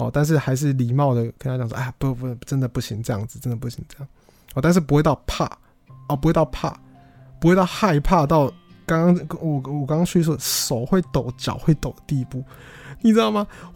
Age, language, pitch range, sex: 20-39, Chinese, 125-160 Hz, male